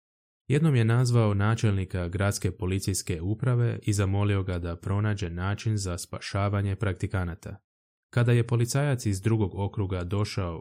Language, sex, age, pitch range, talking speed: Croatian, male, 20-39, 95-110 Hz, 130 wpm